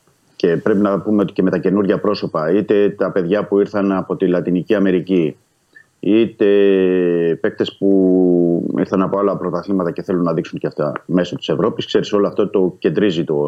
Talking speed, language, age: 185 wpm, Greek, 30-49